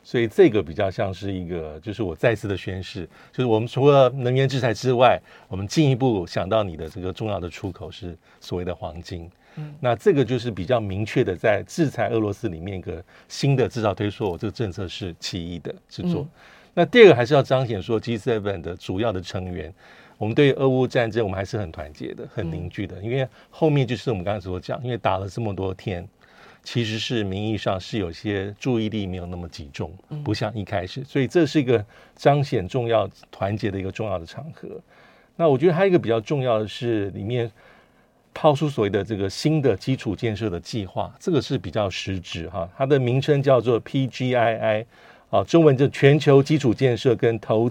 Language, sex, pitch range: Chinese, male, 95-130 Hz